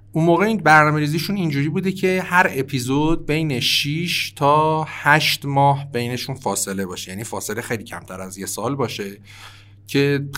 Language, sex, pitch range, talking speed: Persian, male, 100-140 Hz, 150 wpm